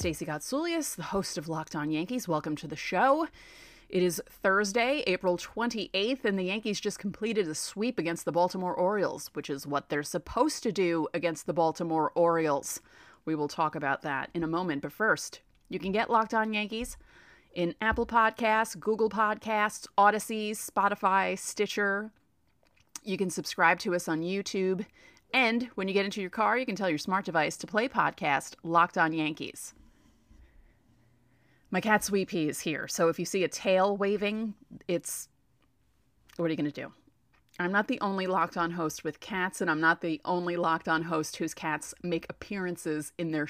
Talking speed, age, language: 180 wpm, 30-49, English